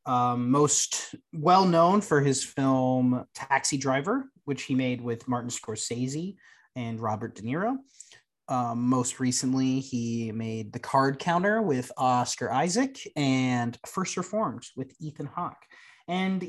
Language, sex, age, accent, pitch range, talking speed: English, male, 30-49, American, 130-190 Hz, 130 wpm